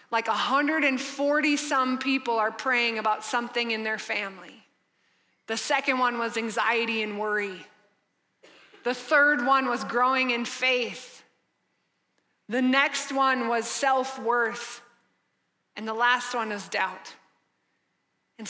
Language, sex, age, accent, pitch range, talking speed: English, female, 20-39, American, 225-255 Hz, 120 wpm